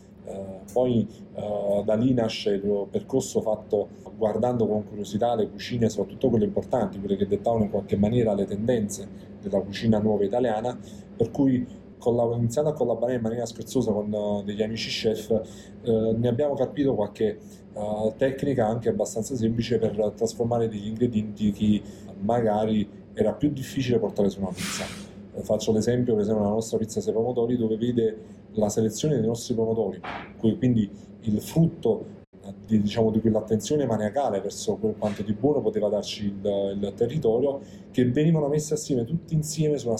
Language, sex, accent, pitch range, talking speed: English, male, Italian, 105-125 Hz, 160 wpm